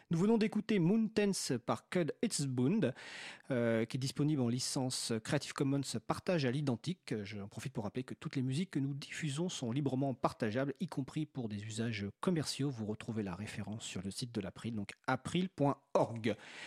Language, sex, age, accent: French, male, 40-59, French